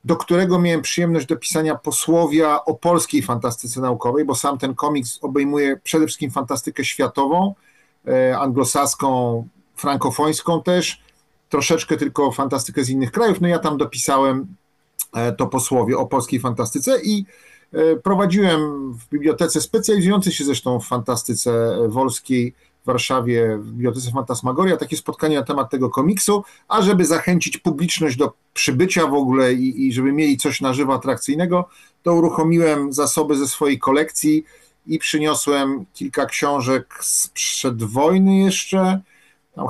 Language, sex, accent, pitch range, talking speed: Polish, male, native, 130-160 Hz, 135 wpm